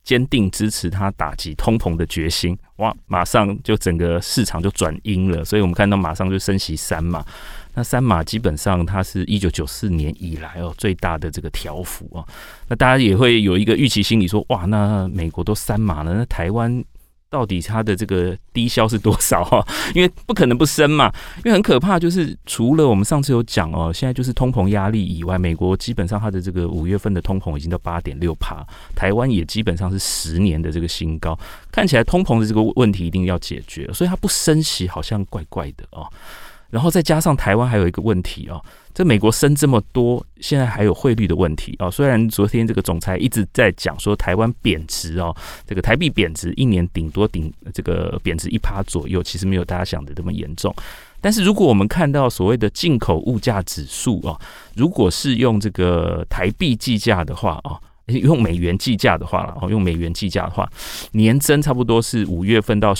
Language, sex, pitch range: Chinese, male, 90-115 Hz